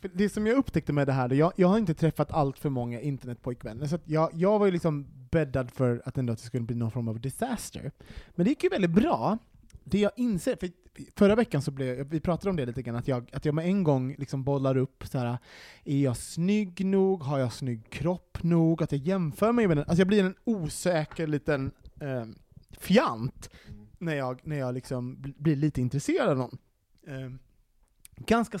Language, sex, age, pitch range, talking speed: Swedish, male, 30-49, 125-180 Hz, 210 wpm